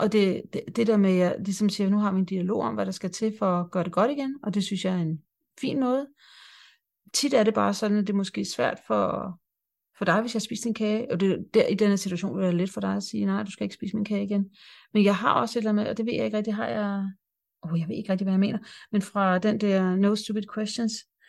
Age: 40-59